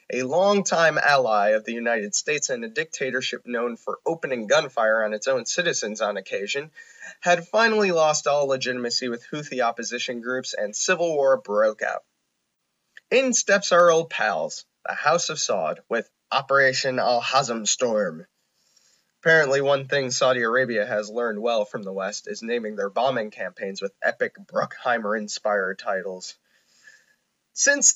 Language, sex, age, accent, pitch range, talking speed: English, male, 20-39, American, 120-160 Hz, 150 wpm